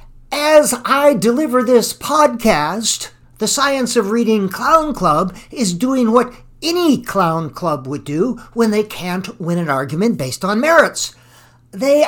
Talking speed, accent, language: 145 wpm, American, English